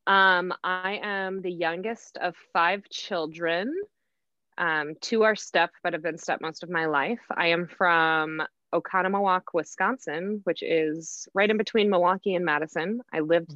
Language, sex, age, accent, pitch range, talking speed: English, female, 20-39, American, 160-195 Hz, 155 wpm